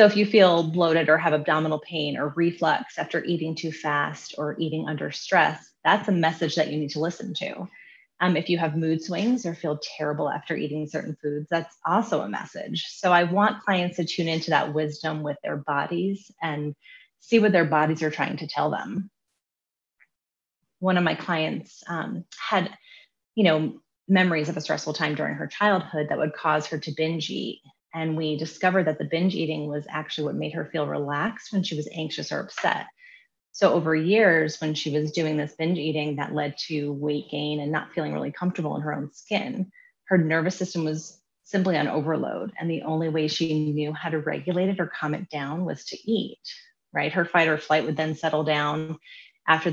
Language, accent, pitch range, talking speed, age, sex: English, American, 150-175 Hz, 205 wpm, 30-49, female